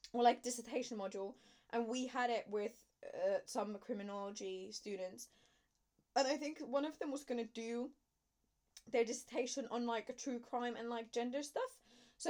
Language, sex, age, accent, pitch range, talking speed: English, female, 20-39, British, 205-250 Hz, 170 wpm